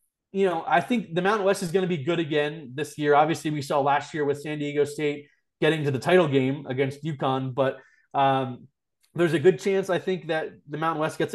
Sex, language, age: male, English, 20-39